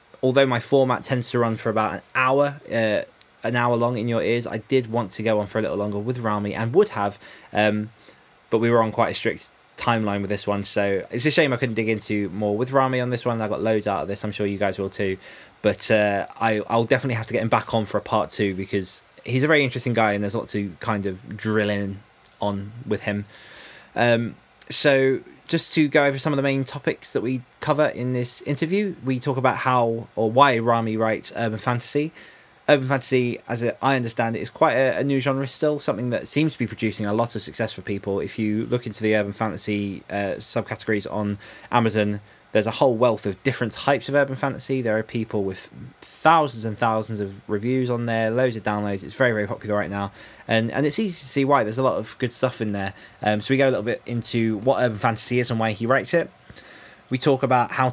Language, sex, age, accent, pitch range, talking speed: English, male, 20-39, British, 105-130 Hz, 240 wpm